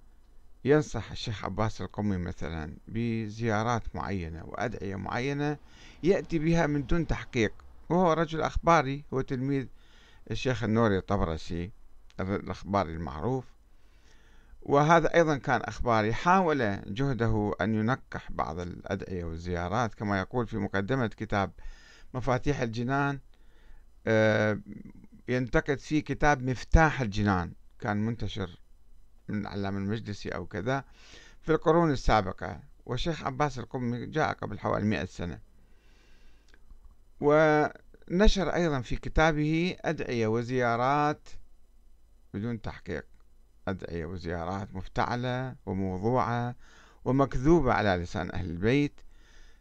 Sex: male